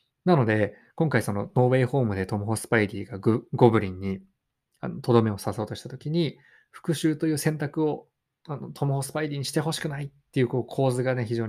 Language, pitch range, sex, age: Japanese, 110-155 Hz, male, 20-39